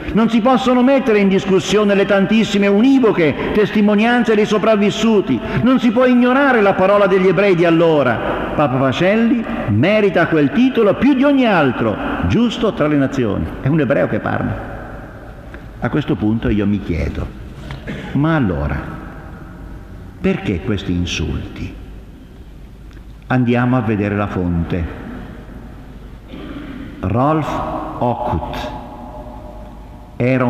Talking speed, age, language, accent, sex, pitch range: 115 wpm, 50-69, Italian, native, male, 100-160 Hz